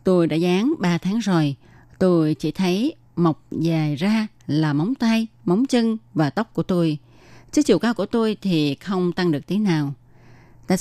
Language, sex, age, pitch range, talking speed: Vietnamese, female, 20-39, 155-195 Hz, 185 wpm